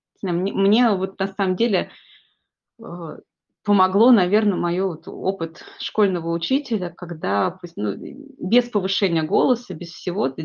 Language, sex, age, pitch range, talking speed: Russian, female, 20-39, 170-205 Hz, 125 wpm